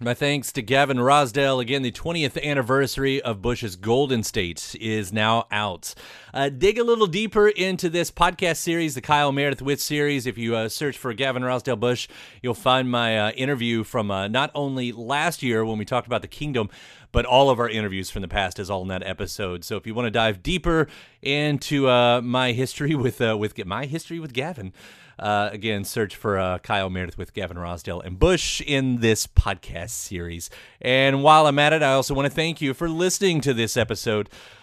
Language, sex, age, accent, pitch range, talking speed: English, male, 30-49, American, 115-155 Hz, 205 wpm